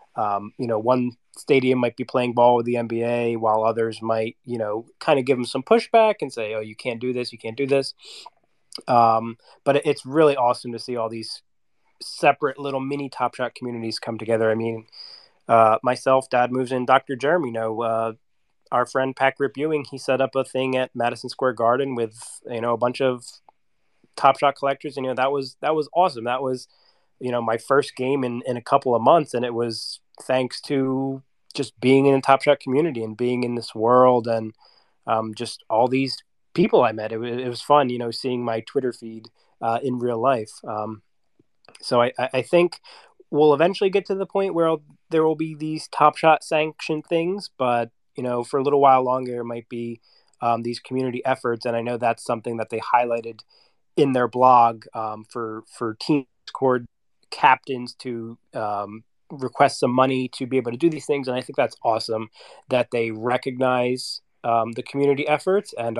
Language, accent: English, American